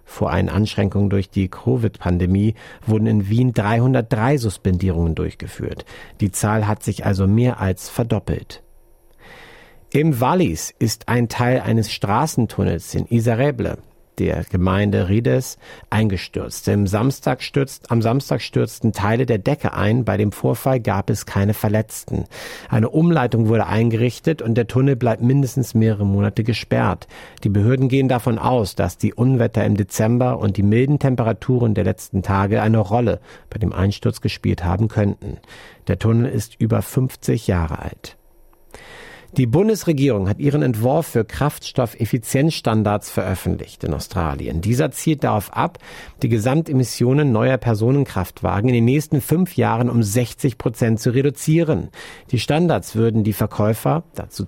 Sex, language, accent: male, German, German